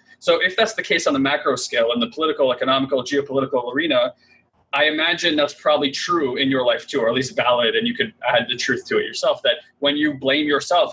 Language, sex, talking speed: English, male, 230 wpm